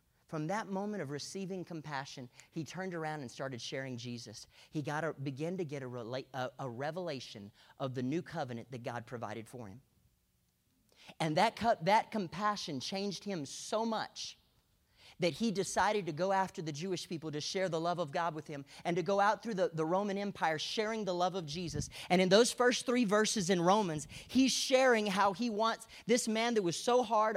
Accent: American